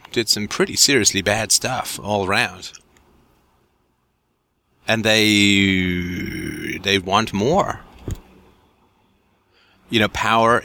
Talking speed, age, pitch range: 90 wpm, 30-49, 85-110 Hz